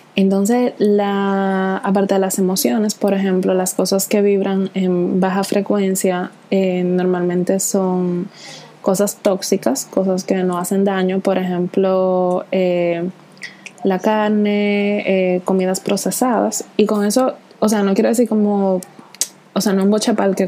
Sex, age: female, 20-39